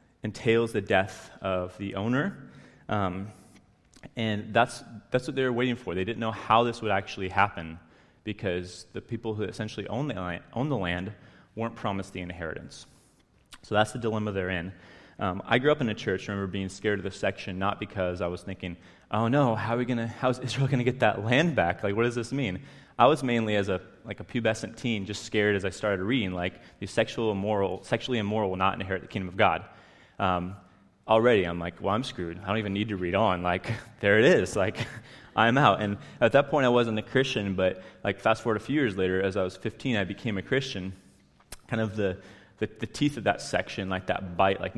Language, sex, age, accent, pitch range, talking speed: English, male, 30-49, American, 95-115 Hz, 225 wpm